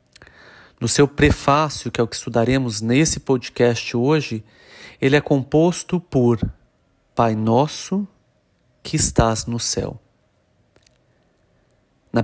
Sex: male